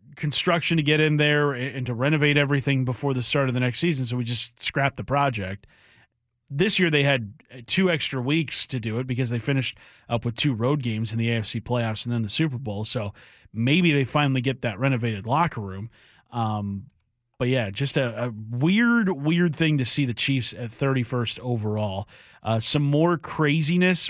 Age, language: 30-49, English